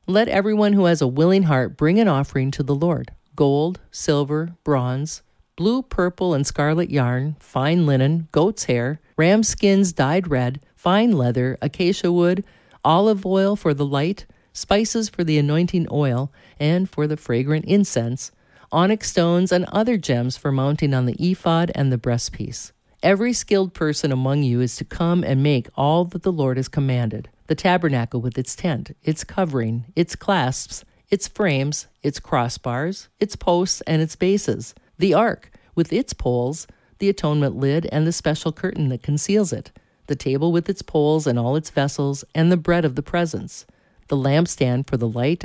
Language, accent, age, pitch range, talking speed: English, American, 50-69, 135-180 Hz, 170 wpm